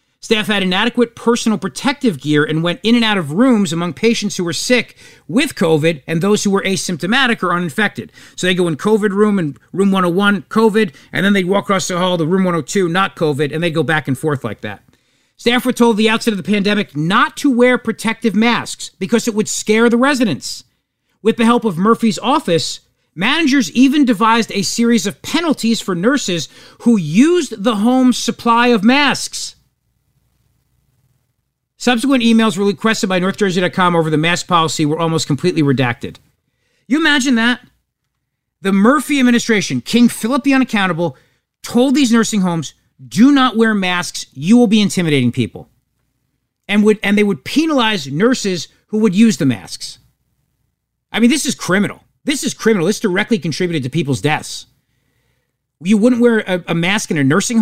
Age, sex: 40-59, male